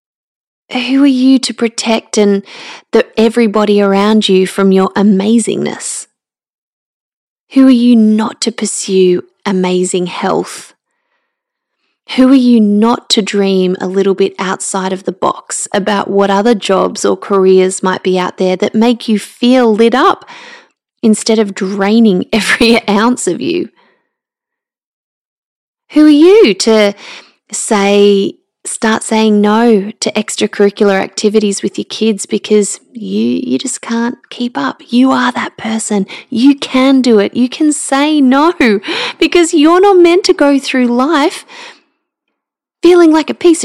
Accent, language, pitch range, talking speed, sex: Australian, English, 210-305 Hz, 140 wpm, female